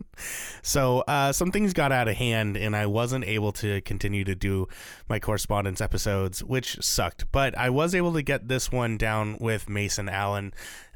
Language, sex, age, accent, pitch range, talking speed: English, male, 30-49, American, 100-125 Hz, 185 wpm